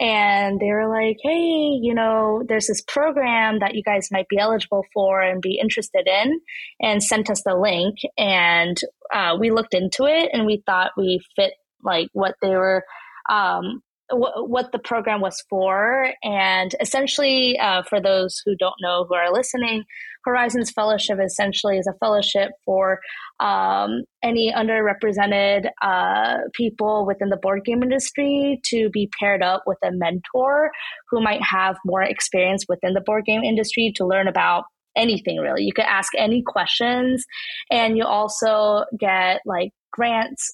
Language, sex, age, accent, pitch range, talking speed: English, female, 20-39, American, 190-225 Hz, 160 wpm